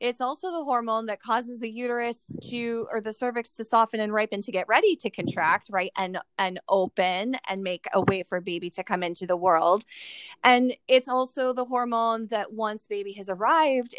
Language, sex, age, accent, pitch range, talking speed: English, female, 20-39, American, 190-245 Hz, 195 wpm